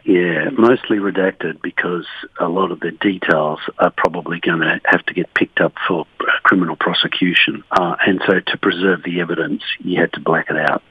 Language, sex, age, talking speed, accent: English, male, 60-79, 185 wpm, Australian